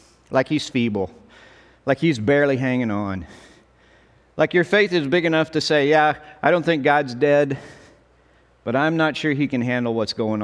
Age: 40-59